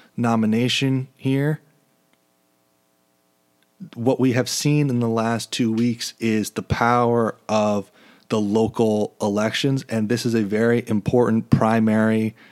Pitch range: 105-120 Hz